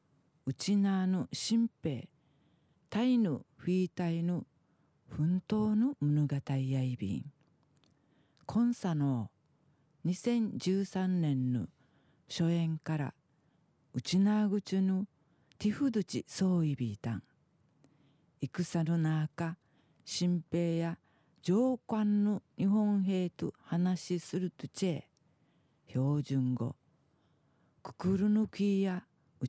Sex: female